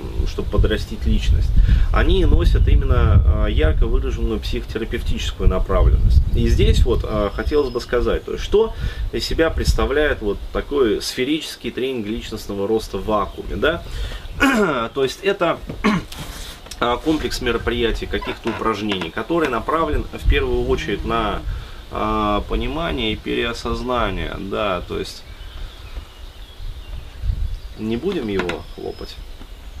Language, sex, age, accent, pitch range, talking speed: Russian, male, 30-49, native, 95-120 Hz, 105 wpm